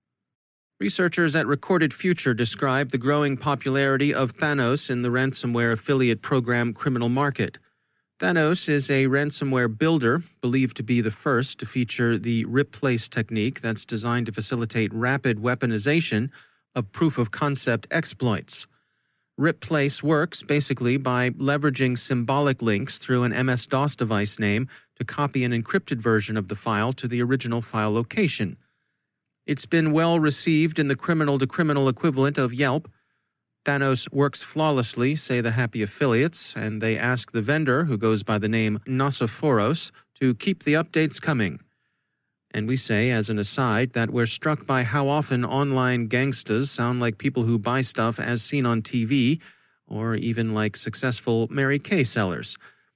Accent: American